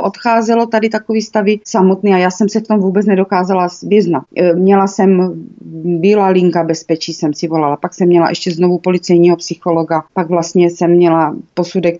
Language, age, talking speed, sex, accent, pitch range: Czech, 30-49, 170 wpm, female, native, 165-195 Hz